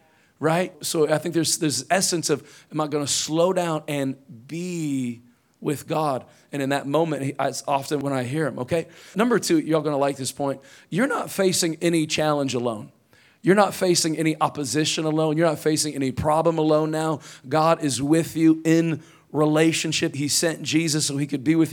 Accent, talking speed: American, 195 wpm